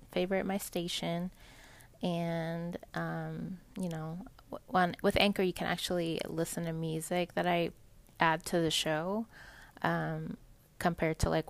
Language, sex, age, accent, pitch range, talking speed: English, female, 20-39, American, 160-190 Hz, 135 wpm